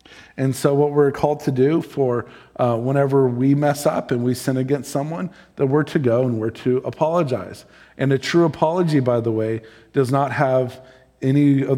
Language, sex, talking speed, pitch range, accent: English, male, 195 wpm, 120-145 Hz, American